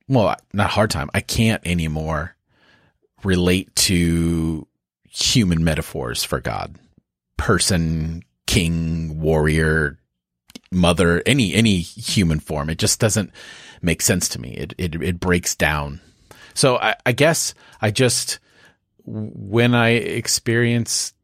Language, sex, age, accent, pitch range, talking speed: English, male, 30-49, American, 85-115 Hz, 120 wpm